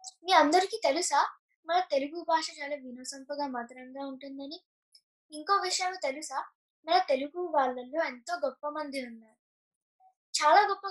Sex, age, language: female, 10-29, Telugu